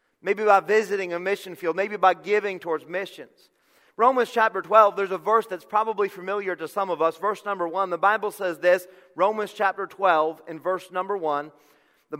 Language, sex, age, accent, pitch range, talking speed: English, male, 40-59, American, 185-225 Hz, 190 wpm